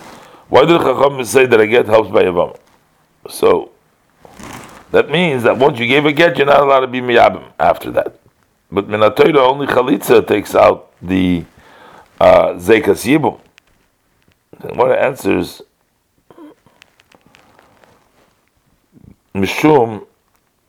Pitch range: 100-130 Hz